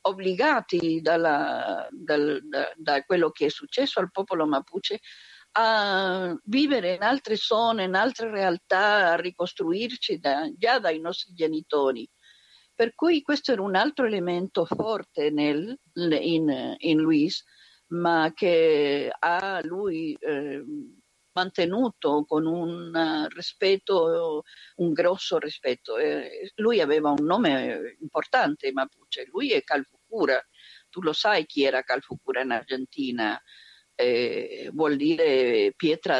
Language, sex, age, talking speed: Italian, female, 50-69, 125 wpm